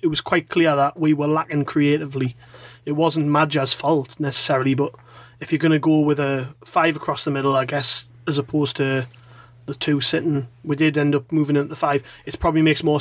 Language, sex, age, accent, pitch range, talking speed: English, male, 30-49, British, 130-155 Hz, 210 wpm